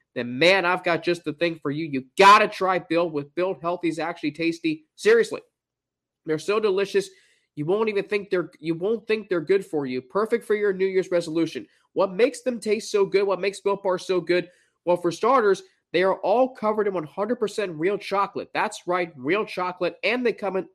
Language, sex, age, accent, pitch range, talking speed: English, male, 20-39, American, 170-205 Hz, 210 wpm